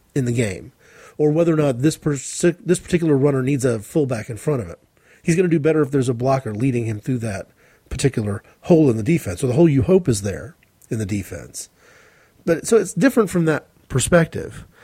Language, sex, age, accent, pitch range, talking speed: English, male, 40-59, American, 115-165 Hz, 220 wpm